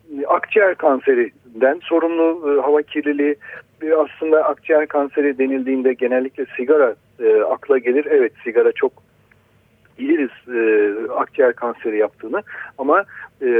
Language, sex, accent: Turkish, male, native